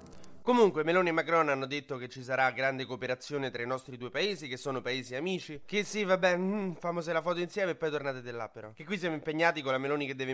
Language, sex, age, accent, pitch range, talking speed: Italian, male, 20-39, native, 135-180 Hz, 240 wpm